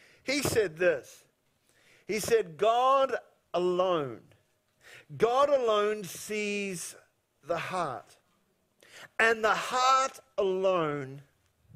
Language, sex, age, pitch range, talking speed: English, male, 50-69, 190-240 Hz, 80 wpm